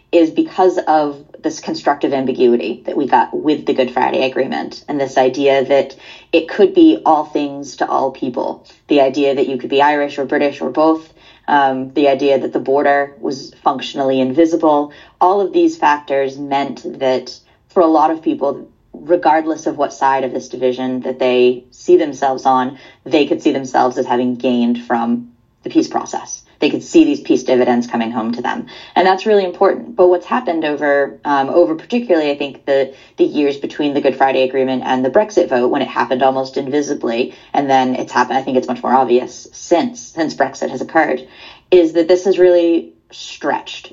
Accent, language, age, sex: American, English, 20-39, female